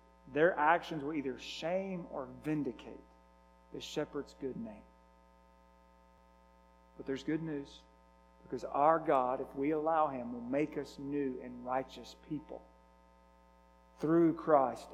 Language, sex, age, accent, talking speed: English, male, 40-59, American, 125 wpm